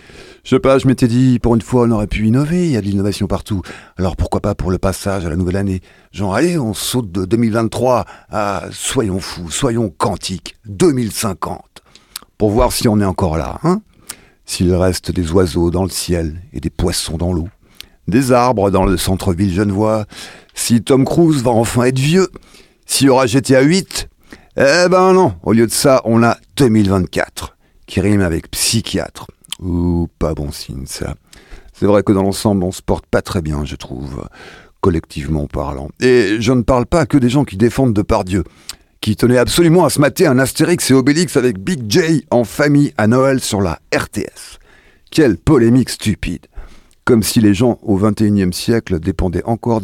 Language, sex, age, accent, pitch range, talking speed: French, male, 50-69, French, 95-125 Hz, 190 wpm